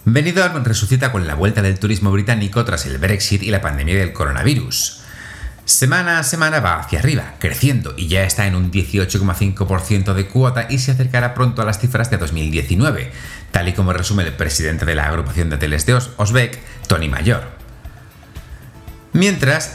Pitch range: 90-125 Hz